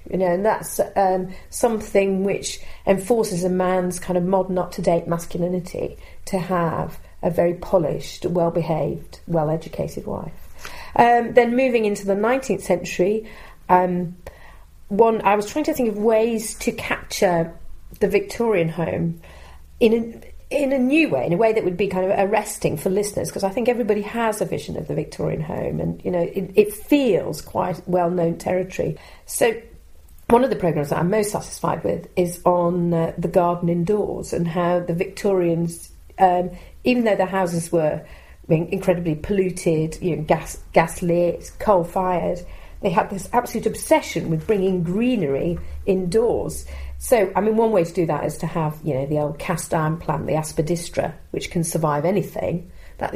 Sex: female